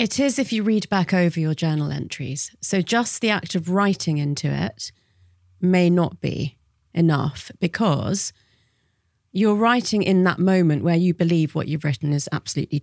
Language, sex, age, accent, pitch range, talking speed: English, female, 30-49, British, 145-180 Hz, 170 wpm